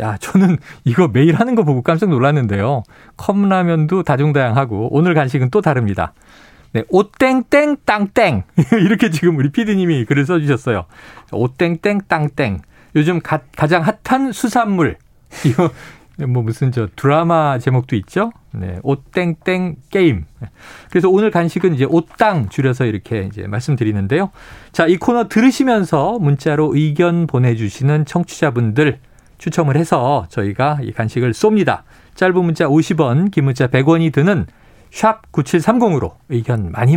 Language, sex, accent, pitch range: Korean, male, native, 125-180 Hz